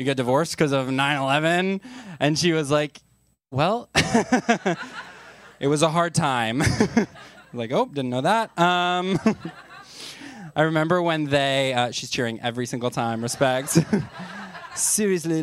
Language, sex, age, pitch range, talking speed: English, male, 20-39, 130-180 Hz, 130 wpm